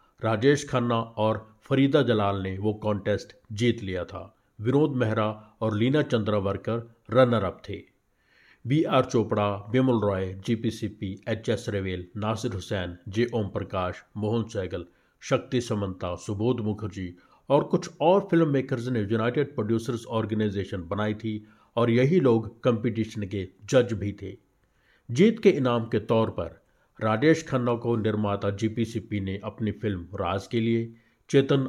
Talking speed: 150 wpm